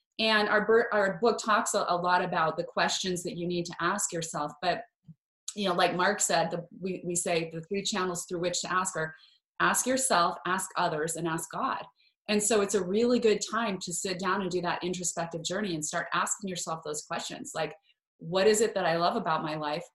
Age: 30-49